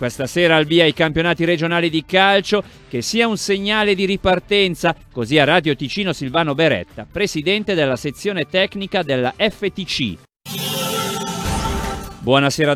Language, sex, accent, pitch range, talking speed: Italian, male, native, 130-175 Hz, 130 wpm